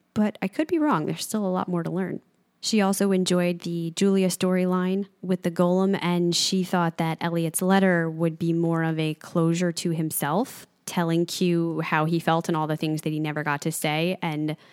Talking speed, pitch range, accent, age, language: 210 wpm, 170-215 Hz, American, 20-39, English